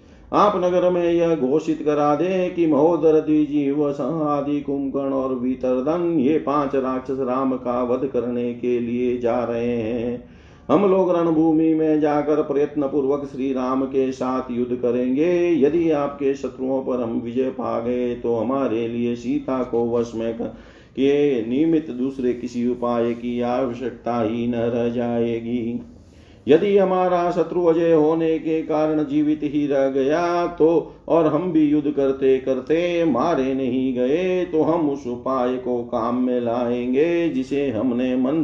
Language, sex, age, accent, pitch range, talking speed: Hindi, male, 50-69, native, 125-160 Hz, 150 wpm